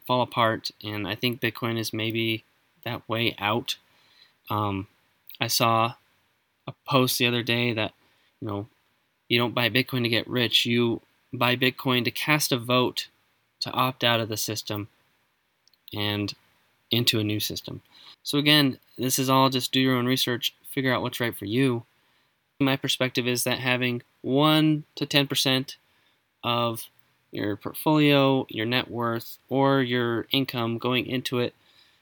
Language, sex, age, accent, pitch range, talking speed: English, male, 20-39, American, 110-130 Hz, 155 wpm